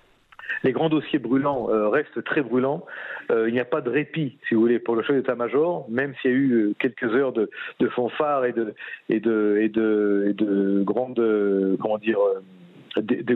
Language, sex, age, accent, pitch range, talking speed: French, male, 50-69, French, 110-145 Hz, 155 wpm